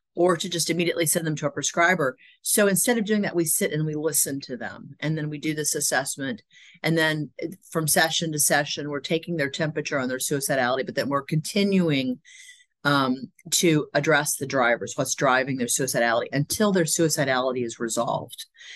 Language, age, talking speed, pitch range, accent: English, 40-59, 185 wpm, 140-170 Hz, American